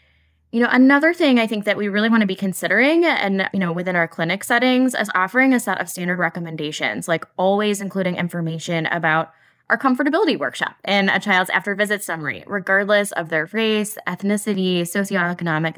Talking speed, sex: 175 wpm, female